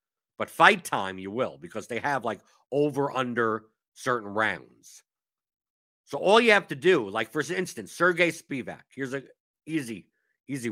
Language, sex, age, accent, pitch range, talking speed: English, male, 50-69, American, 115-155 Hz, 155 wpm